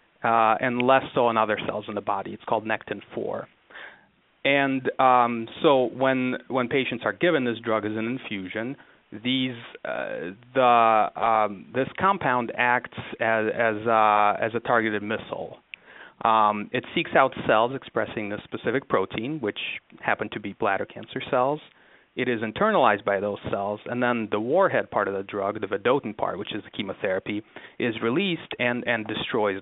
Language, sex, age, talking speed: English, male, 30-49, 170 wpm